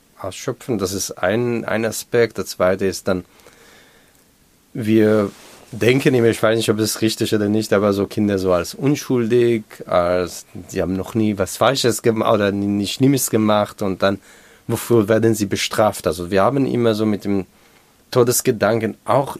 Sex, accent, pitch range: male, German, 95-115 Hz